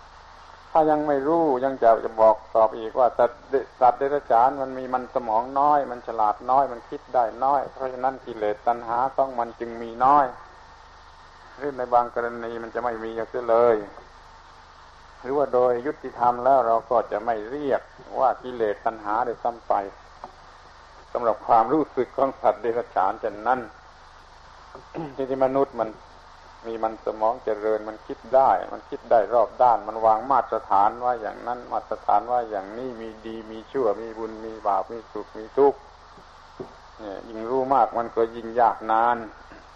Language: Thai